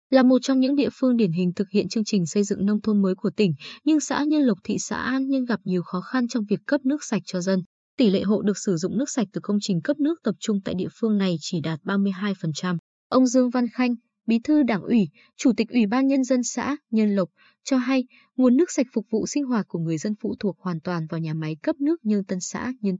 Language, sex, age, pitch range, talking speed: Vietnamese, female, 20-39, 195-255 Hz, 265 wpm